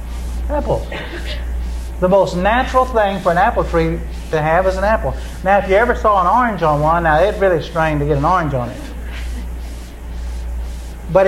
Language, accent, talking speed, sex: English, American, 180 wpm, male